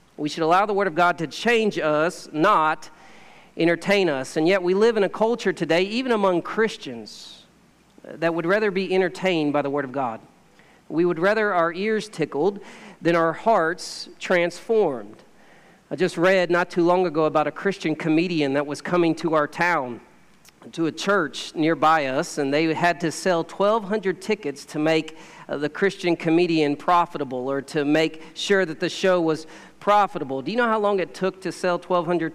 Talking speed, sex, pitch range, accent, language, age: 185 wpm, male, 155-195 Hz, American, English, 40-59